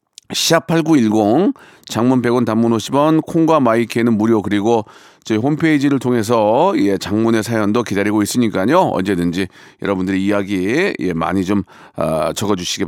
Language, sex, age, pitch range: Korean, male, 40-59, 100-150 Hz